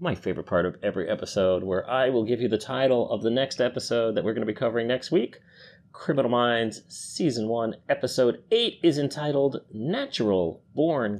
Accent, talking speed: American, 190 wpm